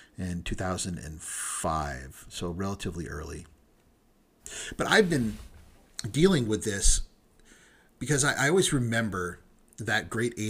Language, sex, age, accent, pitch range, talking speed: English, male, 40-59, American, 90-115 Hz, 105 wpm